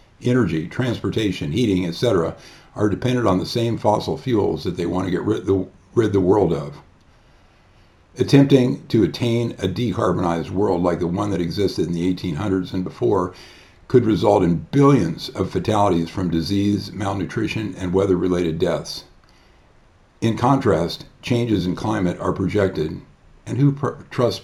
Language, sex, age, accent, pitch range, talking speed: English, male, 50-69, American, 90-110 Hz, 145 wpm